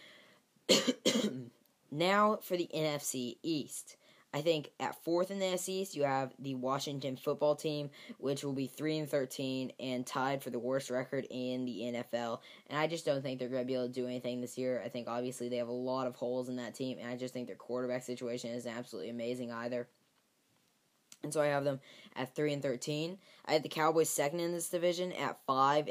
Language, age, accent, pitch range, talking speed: English, 10-29, American, 125-150 Hz, 210 wpm